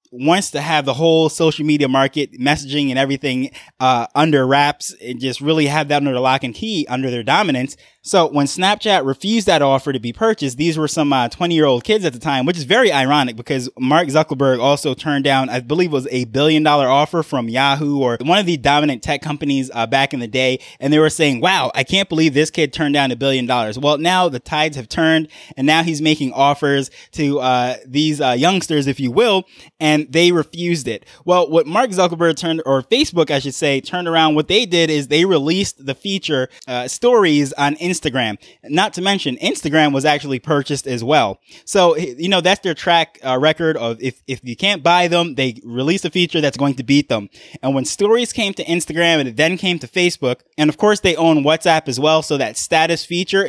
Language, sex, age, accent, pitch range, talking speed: English, male, 20-39, American, 135-165 Hz, 220 wpm